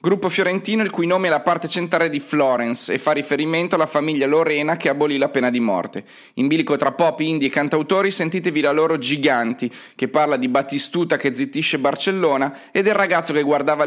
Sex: male